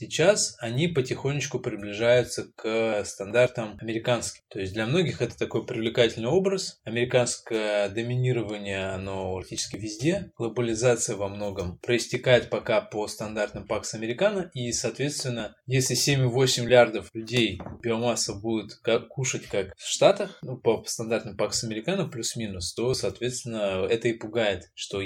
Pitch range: 110-125 Hz